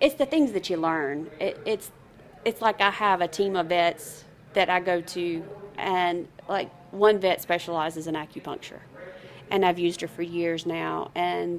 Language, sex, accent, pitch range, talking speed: English, female, American, 170-200 Hz, 180 wpm